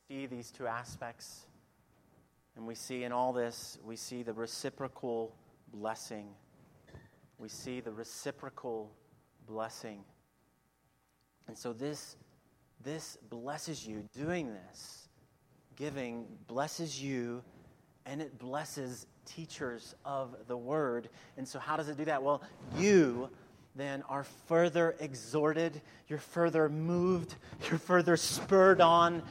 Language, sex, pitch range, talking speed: English, male, 130-175 Hz, 115 wpm